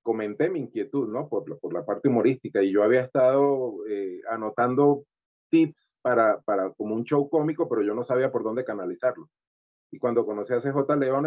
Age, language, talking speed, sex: 30-49, Spanish, 185 wpm, male